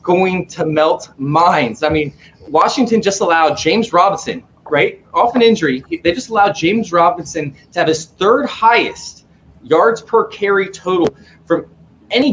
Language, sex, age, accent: English, male, 20-39, American